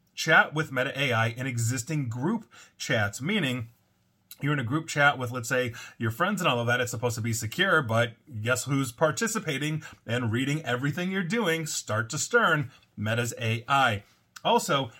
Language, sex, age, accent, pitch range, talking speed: English, male, 30-49, American, 115-145 Hz, 170 wpm